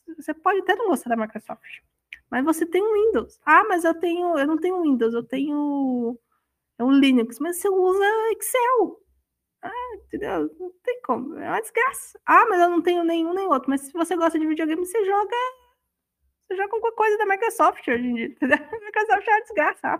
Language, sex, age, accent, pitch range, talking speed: Portuguese, female, 20-39, Brazilian, 230-335 Hz, 210 wpm